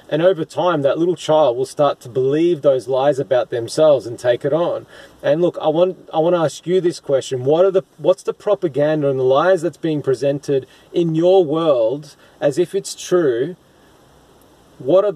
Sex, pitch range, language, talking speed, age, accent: male, 140-180 Hz, English, 200 wpm, 30-49, Australian